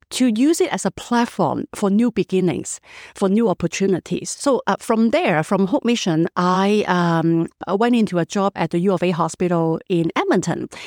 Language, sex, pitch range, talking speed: English, female, 175-230 Hz, 190 wpm